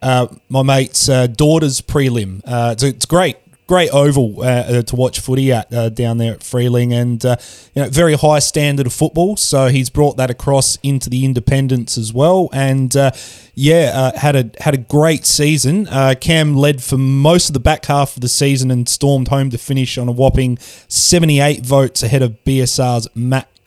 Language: English